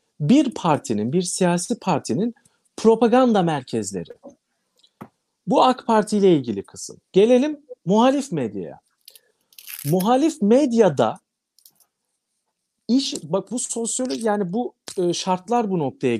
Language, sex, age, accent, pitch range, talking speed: Turkish, male, 50-69, native, 160-240 Hz, 100 wpm